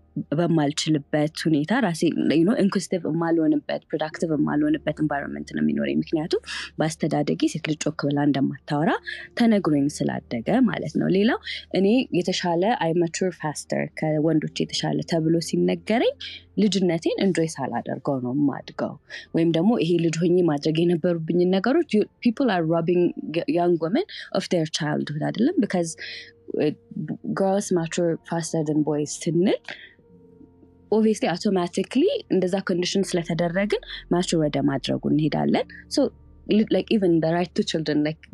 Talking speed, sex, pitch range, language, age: 120 wpm, female, 150-190 Hz, Amharic, 20-39